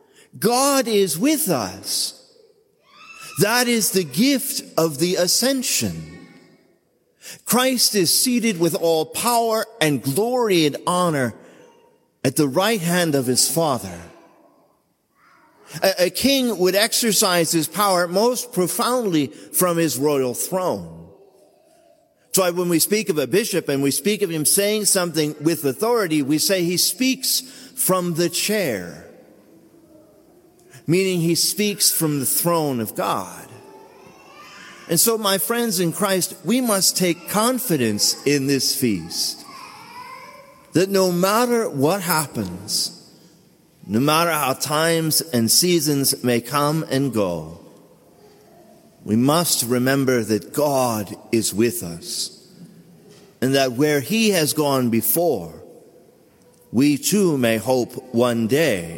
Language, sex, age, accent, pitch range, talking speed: English, male, 50-69, American, 135-220 Hz, 125 wpm